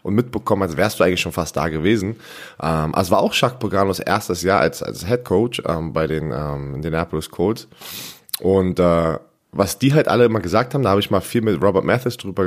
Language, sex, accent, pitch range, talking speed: German, male, German, 90-115 Hz, 225 wpm